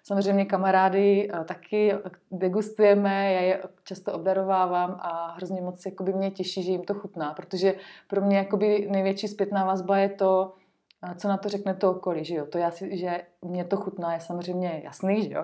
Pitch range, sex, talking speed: 175-195 Hz, female, 185 wpm